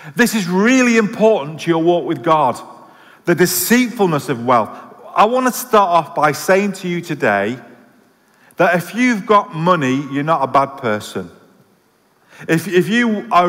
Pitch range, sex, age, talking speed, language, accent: 160-210 Hz, male, 40-59, 165 wpm, English, British